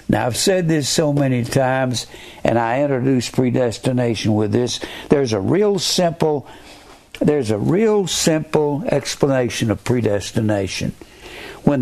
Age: 60-79